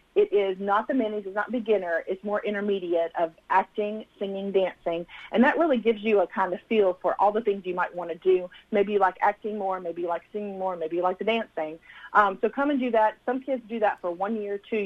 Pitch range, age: 180-215 Hz, 40-59